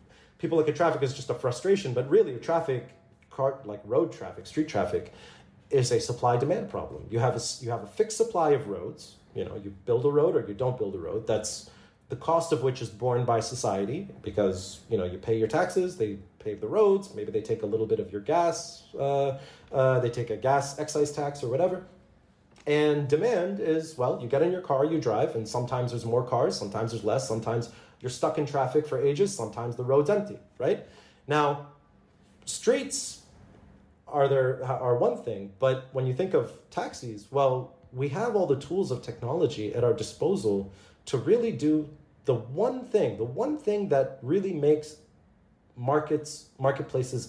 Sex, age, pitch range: male, 30-49, 120-170 Hz